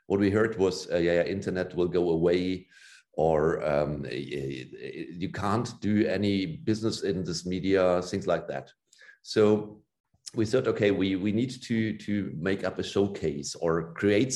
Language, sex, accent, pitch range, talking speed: English, male, German, 90-110 Hz, 165 wpm